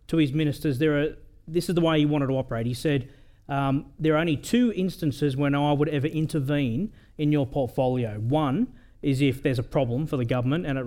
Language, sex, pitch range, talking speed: English, male, 125-160 Hz, 220 wpm